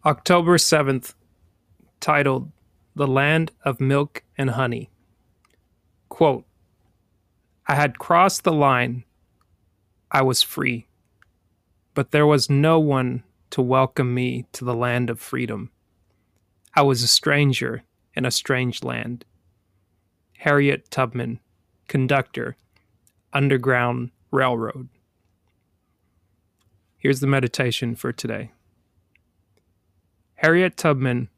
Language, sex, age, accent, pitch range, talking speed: English, male, 30-49, American, 100-140 Hz, 100 wpm